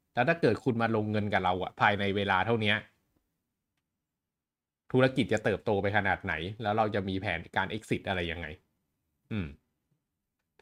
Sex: male